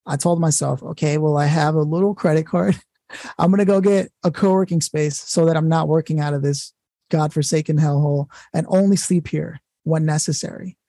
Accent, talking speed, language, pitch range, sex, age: American, 185 wpm, English, 160-200 Hz, male, 20-39